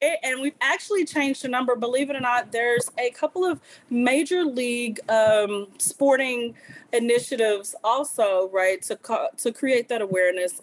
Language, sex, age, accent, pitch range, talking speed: English, female, 30-49, American, 210-255 Hz, 150 wpm